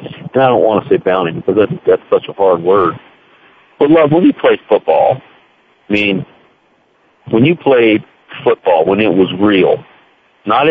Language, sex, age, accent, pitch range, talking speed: English, male, 50-69, American, 105-145 Hz, 175 wpm